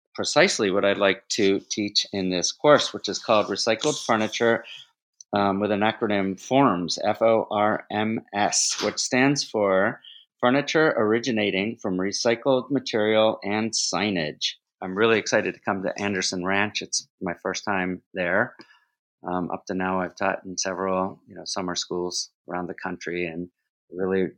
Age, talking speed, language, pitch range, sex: 40-59, 150 wpm, English, 90-105 Hz, male